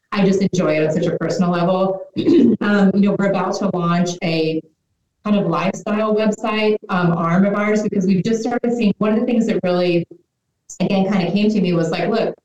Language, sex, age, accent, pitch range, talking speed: English, female, 30-49, American, 175-200 Hz, 215 wpm